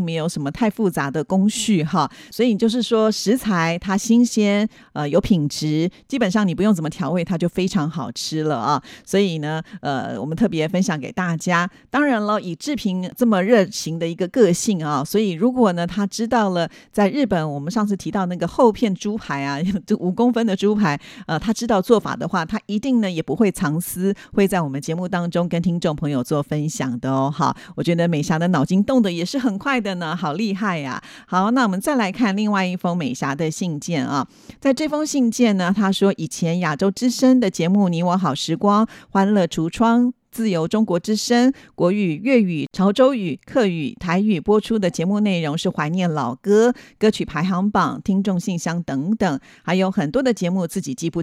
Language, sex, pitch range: Chinese, female, 170-220 Hz